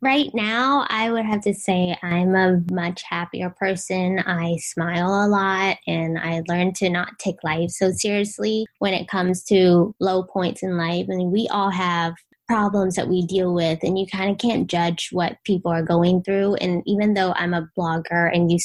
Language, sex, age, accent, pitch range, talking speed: English, female, 20-39, American, 180-215 Hz, 200 wpm